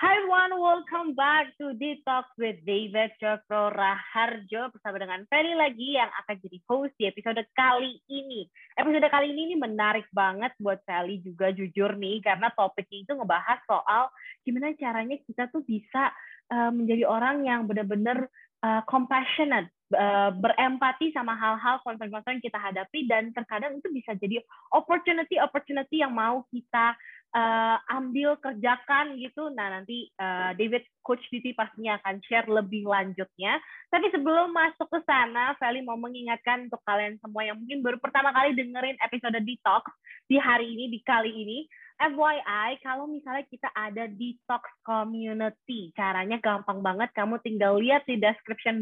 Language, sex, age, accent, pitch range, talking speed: Indonesian, female, 20-39, native, 210-275 Hz, 145 wpm